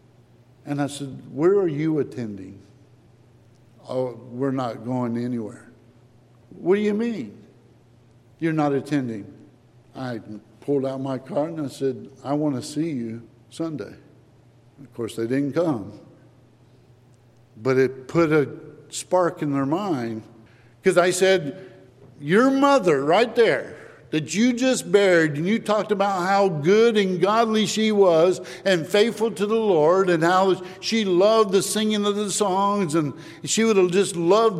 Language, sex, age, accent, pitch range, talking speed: English, male, 60-79, American, 120-180 Hz, 150 wpm